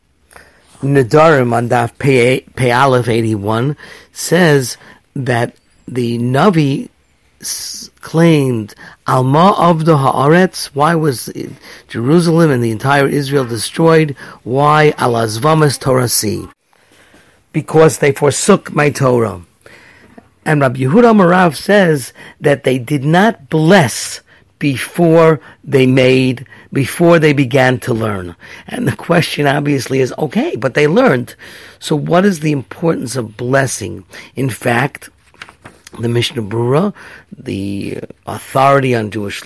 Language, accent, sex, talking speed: English, American, male, 110 wpm